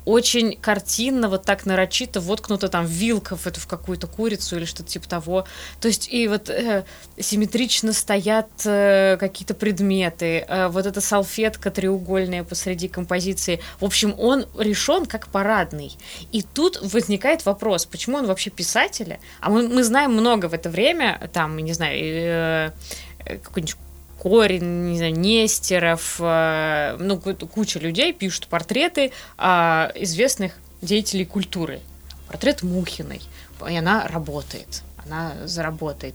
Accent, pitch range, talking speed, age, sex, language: native, 165-215 Hz, 130 wpm, 20-39, female, Russian